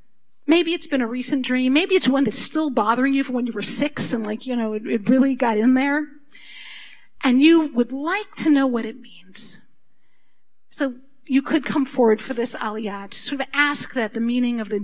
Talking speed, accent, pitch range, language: 220 wpm, American, 220-285 Hz, English